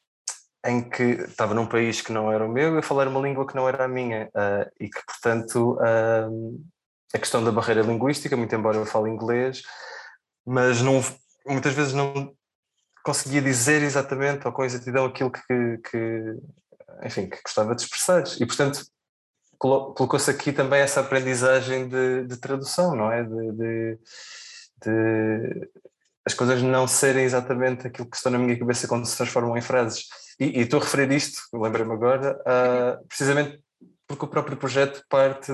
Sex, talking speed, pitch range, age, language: male, 160 wpm, 110-135 Hz, 20-39, Portuguese